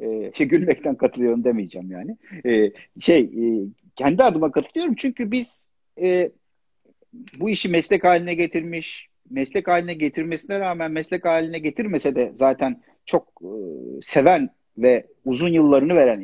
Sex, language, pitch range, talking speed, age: male, Turkish, 125-195 Hz, 135 wpm, 50-69